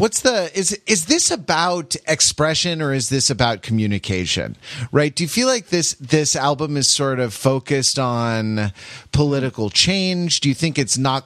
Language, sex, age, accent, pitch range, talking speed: English, male, 30-49, American, 110-140 Hz, 170 wpm